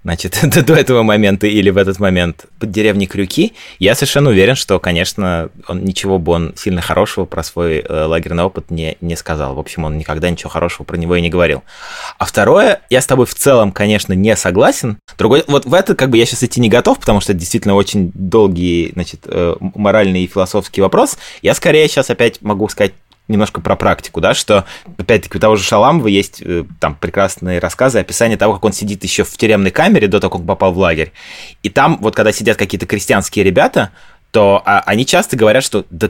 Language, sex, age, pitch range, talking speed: Russian, male, 20-39, 90-115 Hz, 210 wpm